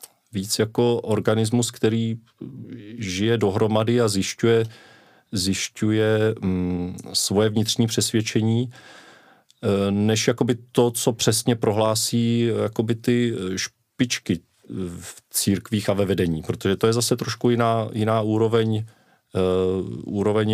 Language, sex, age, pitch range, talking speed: Czech, male, 40-59, 95-115 Hz, 95 wpm